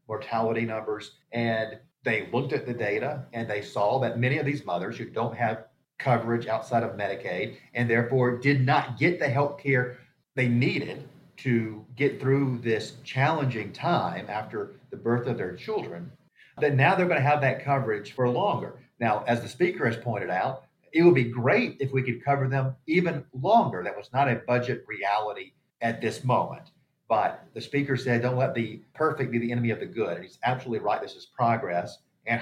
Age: 40-59